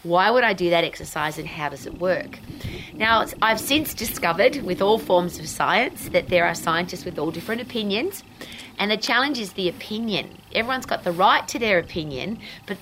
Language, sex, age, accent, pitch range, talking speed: English, female, 30-49, Australian, 175-225 Hz, 195 wpm